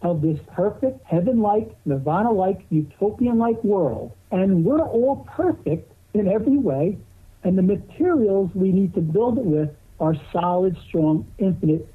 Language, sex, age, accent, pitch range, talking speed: English, male, 60-79, American, 145-195 Hz, 140 wpm